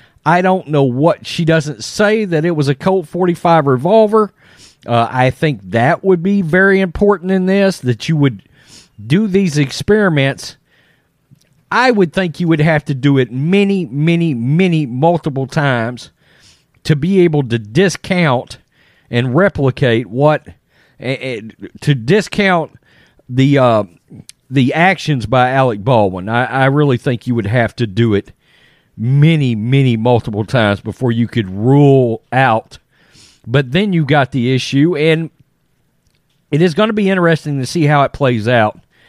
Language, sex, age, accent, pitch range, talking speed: English, male, 40-59, American, 120-160 Hz, 150 wpm